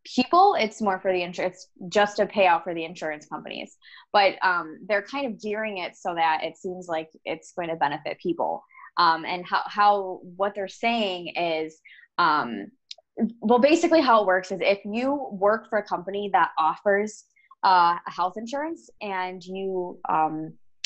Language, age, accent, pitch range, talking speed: English, 20-39, American, 180-225 Hz, 170 wpm